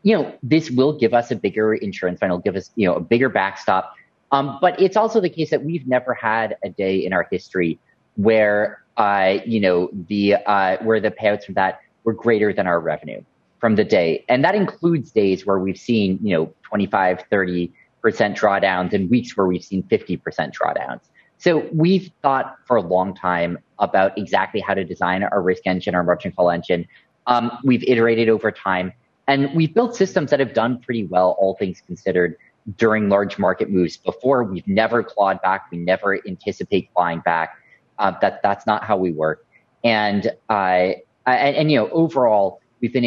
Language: English